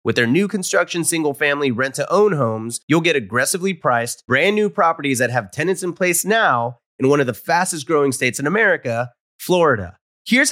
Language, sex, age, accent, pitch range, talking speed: English, male, 30-49, American, 125-180 Hz, 165 wpm